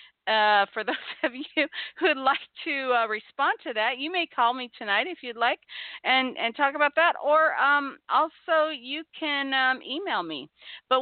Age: 40-59